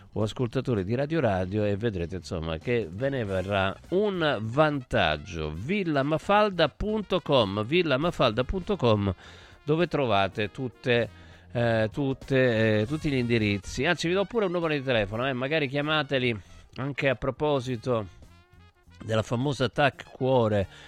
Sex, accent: male, native